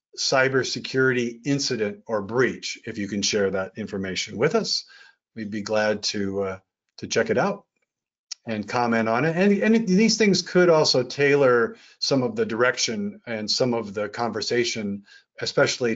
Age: 50-69